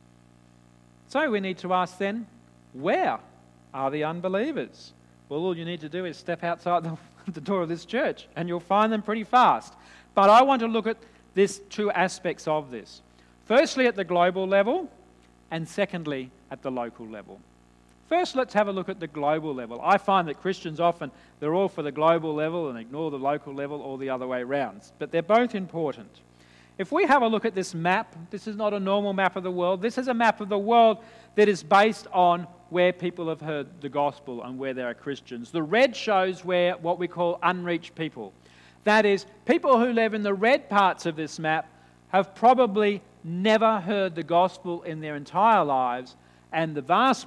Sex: male